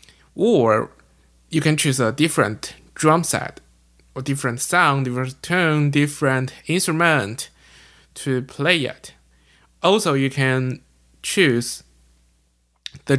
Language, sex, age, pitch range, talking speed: English, male, 20-39, 115-140 Hz, 105 wpm